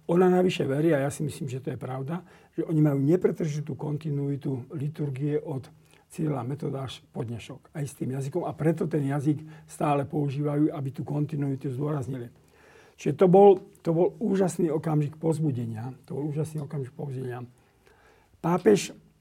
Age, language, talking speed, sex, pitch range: 50-69, Slovak, 155 wpm, male, 135-160 Hz